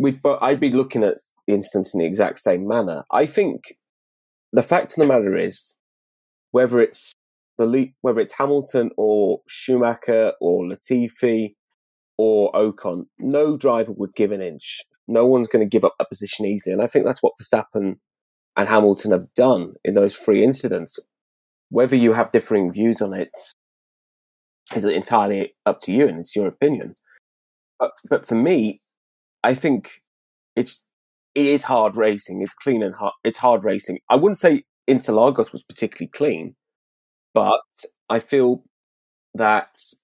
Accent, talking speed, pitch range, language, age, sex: British, 165 wpm, 100-130 Hz, Greek, 20-39, male